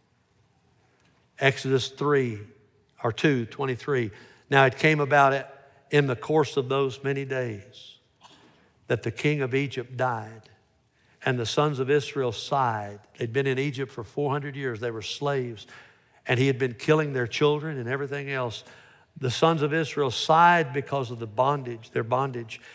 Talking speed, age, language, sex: 155 wpm, 60-79, English, male